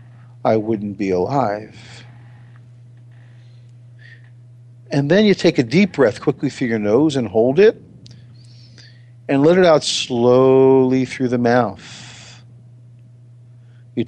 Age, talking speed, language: 50-69, 115 wpm, English